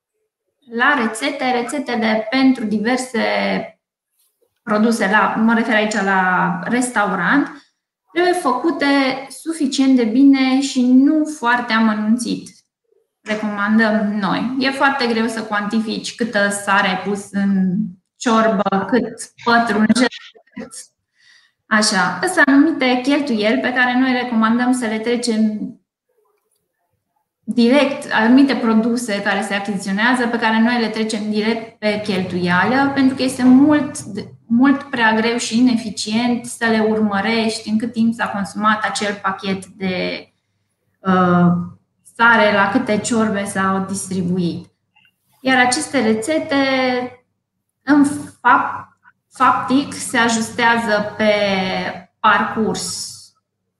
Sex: female